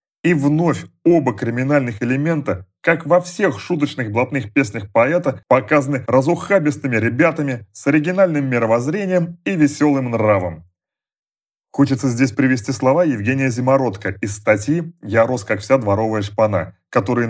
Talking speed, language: 125 wpm, Russian